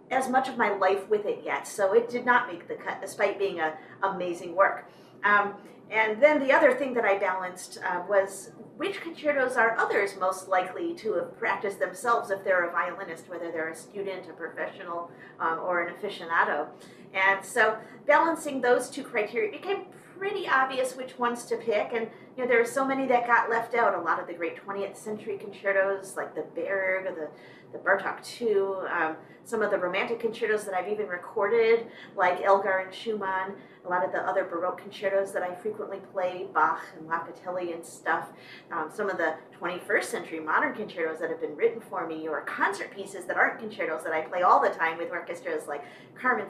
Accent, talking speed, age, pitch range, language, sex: American, 200 wpm, 40-59, 180-240 Hz, English, female